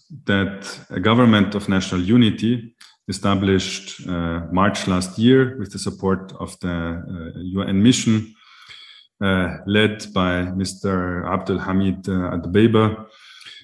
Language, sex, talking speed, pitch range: English, male, 115 wpm, 90-105 Hz